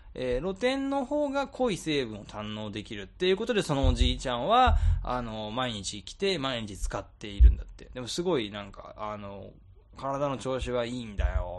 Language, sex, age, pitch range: Japanese, male, 20-39, 100-150 Hz